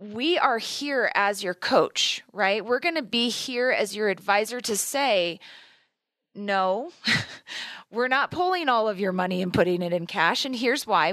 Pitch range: 185-230 Hz